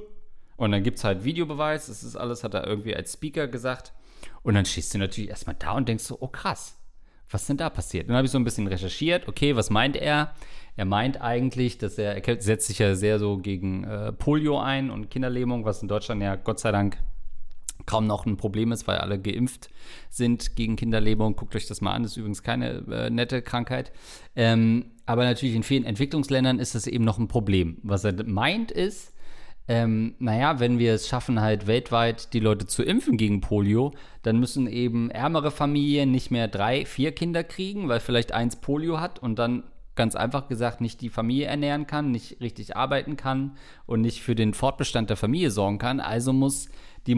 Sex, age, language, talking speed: male, 40-59, German, 205 wpm